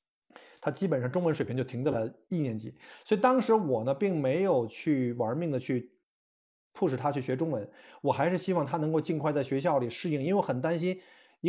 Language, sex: Chinese, male